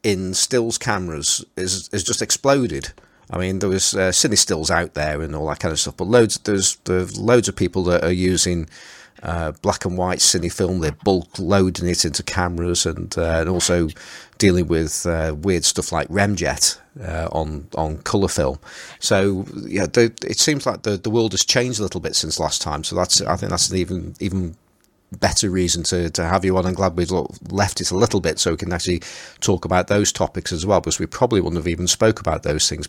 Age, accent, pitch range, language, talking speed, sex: 40-59, British, 85-100 Hz, English, 215 wpm, male